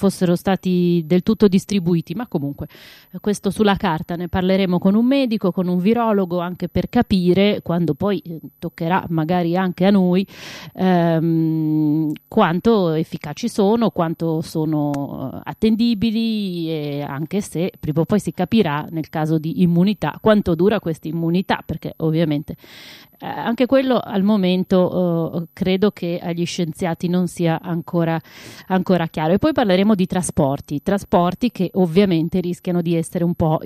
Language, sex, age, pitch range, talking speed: Italian, female, 30-49, 165-195 Hz, 145 wpm